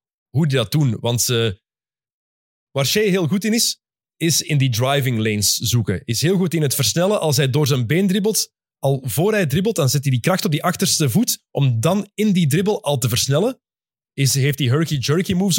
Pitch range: 130-175 Hz